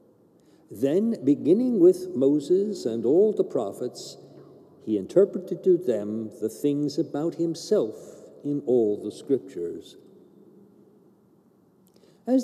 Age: 60-79